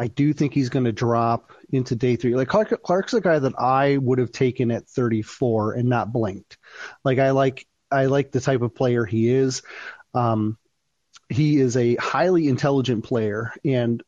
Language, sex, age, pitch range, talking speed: English, male, 30-49, 115-140 Hz, 185 wpm